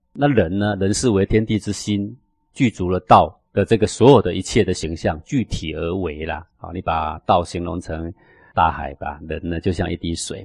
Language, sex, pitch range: Chinese, male, 90-120 Hz